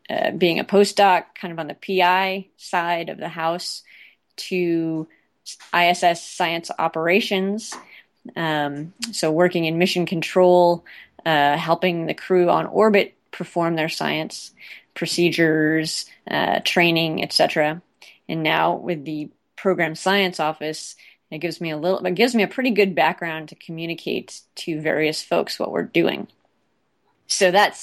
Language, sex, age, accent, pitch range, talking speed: English, female, 30-49, American, 170-200 Hz, 140 wpm